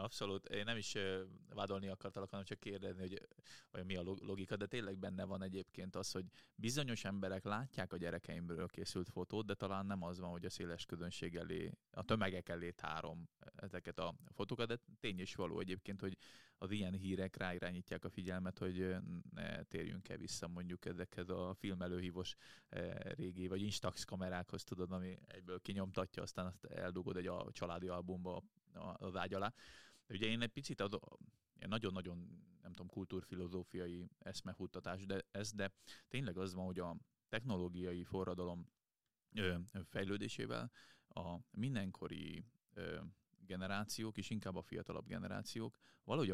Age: 20-39